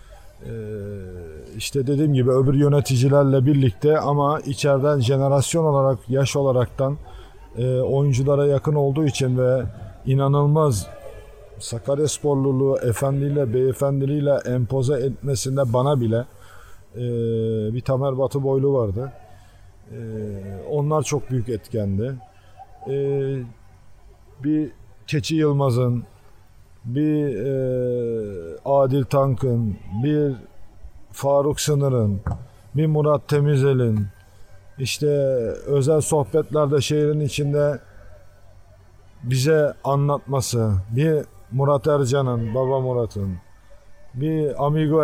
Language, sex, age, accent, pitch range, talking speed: Turkish, male, 50-69, native, 110-145 Hz, 90 wpm